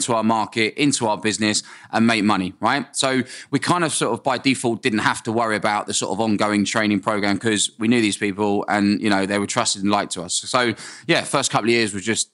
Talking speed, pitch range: 255 wpm, 110-140 Hz